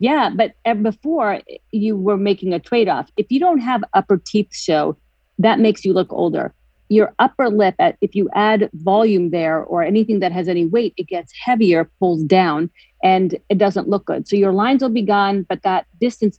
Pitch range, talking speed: 175-215 Hz, 195 wpm